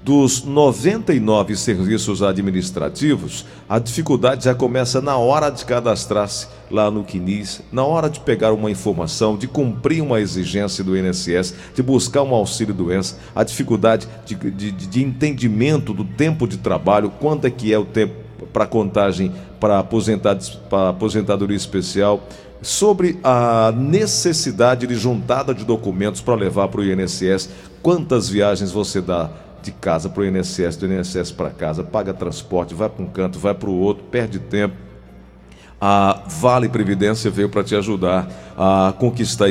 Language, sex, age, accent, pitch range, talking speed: Portuguese, male, 50-69, Brazilian, 95-120 Hz, 150 wpm